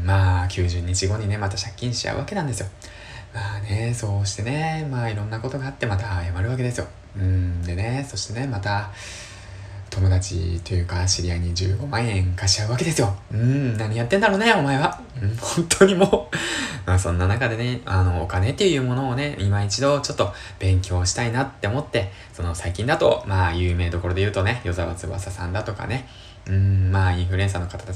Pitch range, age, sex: 95-120 Hz, 20-39, male